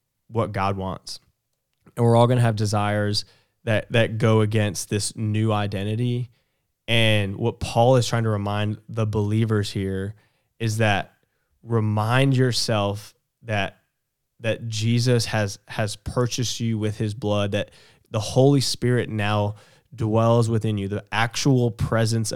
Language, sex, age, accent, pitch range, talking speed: English, male, 10-29, American, 105-120 Hz, 140 wpm